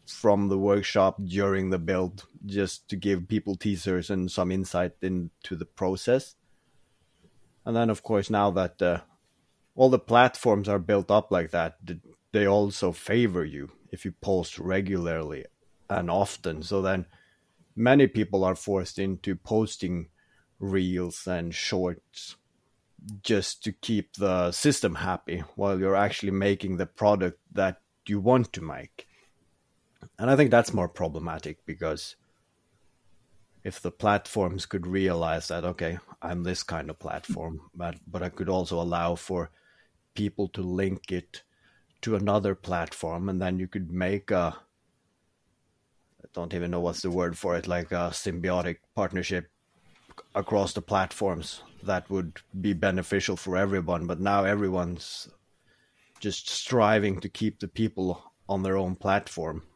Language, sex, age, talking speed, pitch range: English, male, 30-49, 145 wpm, 90-100 Hz